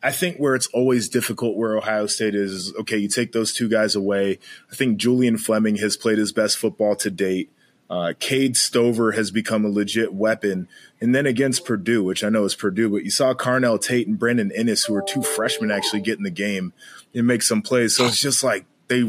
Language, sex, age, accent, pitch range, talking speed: English, male, 20-39, American, 105-125 Hz, 225 wpm